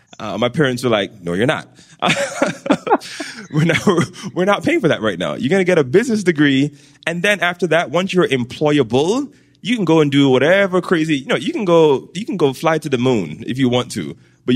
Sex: male